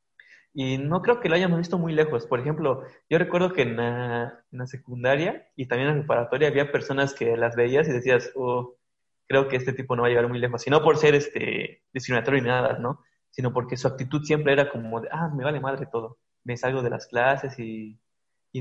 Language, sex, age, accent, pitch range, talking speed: Spanish, male, 20-39, Mexican, 125-150 Hz, 230 wpm